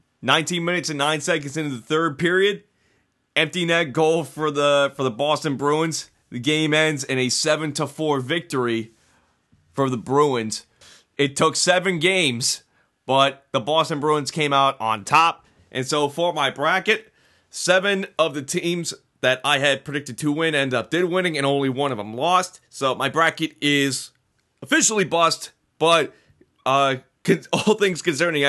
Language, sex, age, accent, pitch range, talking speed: English, male, 30-49, American, 125-160 Hz, 160 wpm